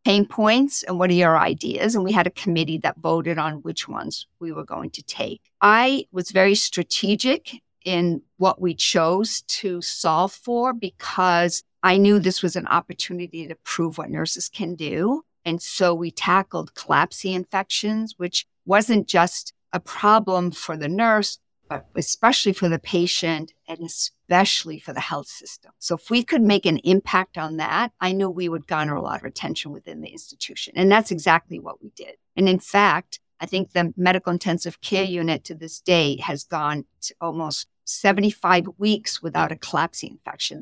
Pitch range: 165-205 Hz